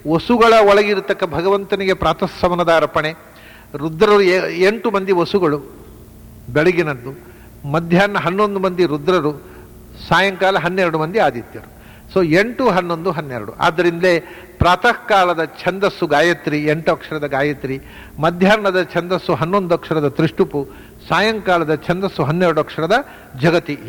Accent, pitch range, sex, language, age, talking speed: Indian, 150-185 Hz, male, English, 60-79, 105 wpm